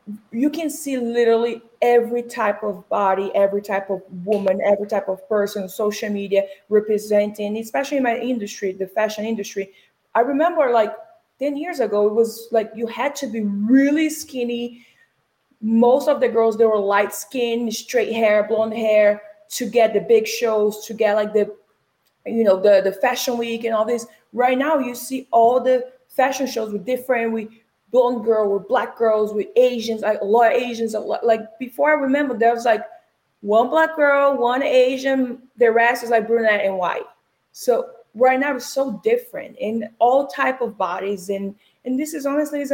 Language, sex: English, female